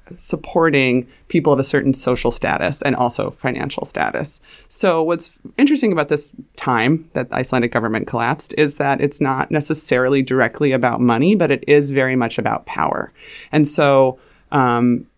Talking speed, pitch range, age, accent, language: 160 wpm, 120-145 Hz, 20-39, American, English